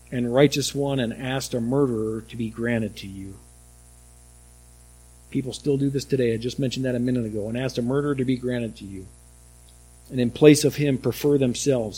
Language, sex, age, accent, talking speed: English, male, 50-69, American, 200 wpm